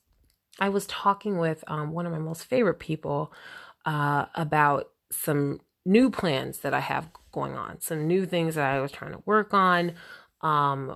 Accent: American